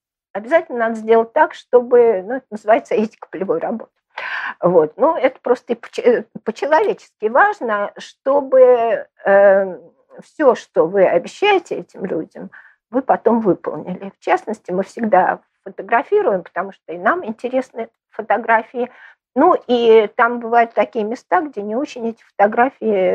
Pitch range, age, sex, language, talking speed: 200-275 Hz, 50-69, female, Russian, 130 wpm